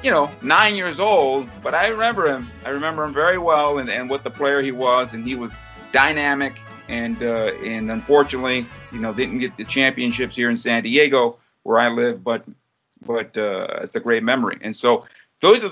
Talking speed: 200 wpm